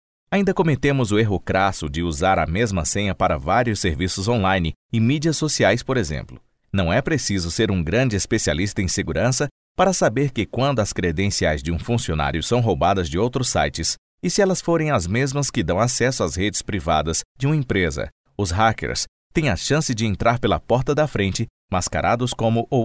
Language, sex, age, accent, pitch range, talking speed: English, male, 40-59, Brazilian, 90-125 Hz, 185 wpm